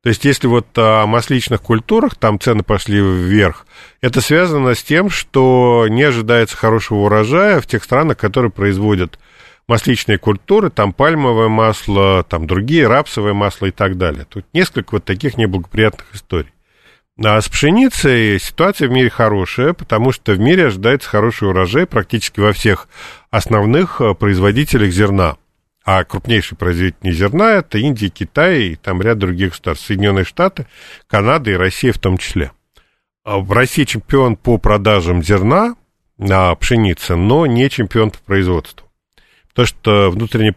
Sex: male